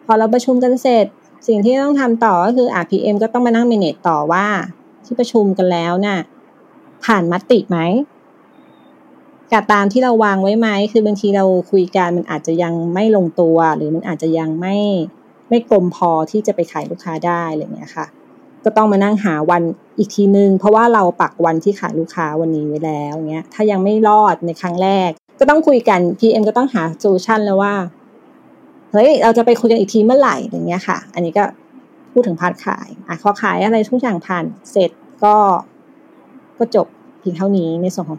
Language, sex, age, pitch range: Thai, female, 20-39, 175-230 Hz